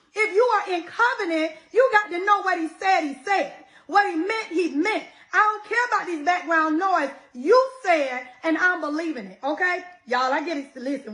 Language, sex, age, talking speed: English, female, 30-49, 205 wpm